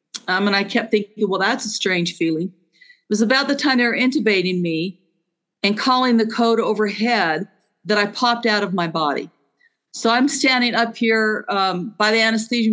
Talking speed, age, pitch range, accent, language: 185 wpm, 50-69, 180-235 Hz, American, English